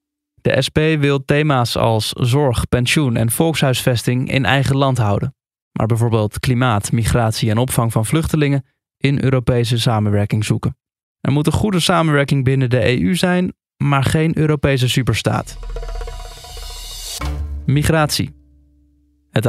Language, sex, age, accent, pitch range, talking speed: Dutch, male, 20-39, Dutch, 115-145 Hz, 125 wpm